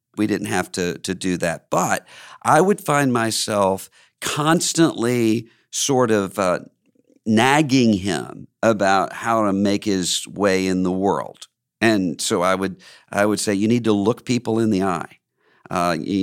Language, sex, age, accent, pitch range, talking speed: English, male, 50-69, American, 95-120 Hz, 160 wpm